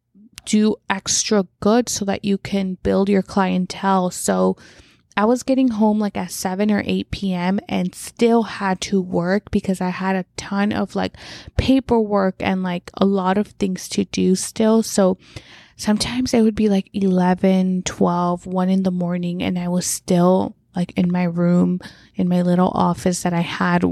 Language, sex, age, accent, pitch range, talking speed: English, female, 20-39, American, 180-205 Hz, 175 wpm